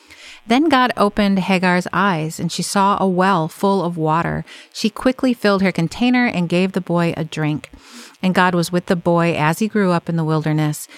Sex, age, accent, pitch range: female, 40-59, American, 165-205 Hz